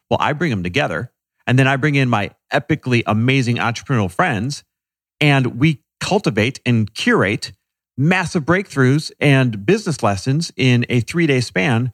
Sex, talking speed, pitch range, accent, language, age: male, 145 wpm, 100-130 Hz, American, English, 40-59